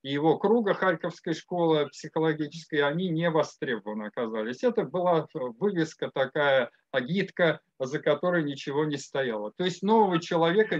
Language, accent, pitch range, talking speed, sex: Russian, native, 155-195 Hz, 135 wpm, male